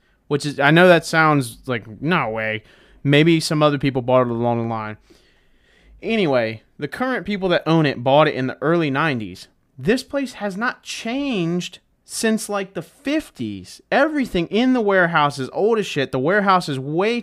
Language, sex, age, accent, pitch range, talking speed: English, male, 30-49, American, 140-215 Hz, 180 wpm